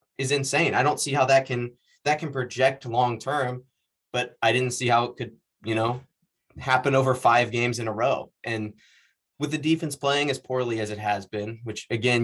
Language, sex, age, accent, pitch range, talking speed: English, male, 20-39, American, 115-140 Hz, 205 wpm